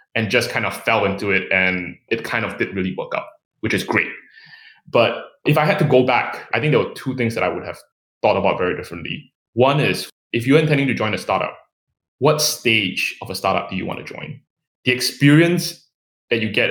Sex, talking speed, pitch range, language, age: male, 225 wpm, 110-150 Hz, English, 20-39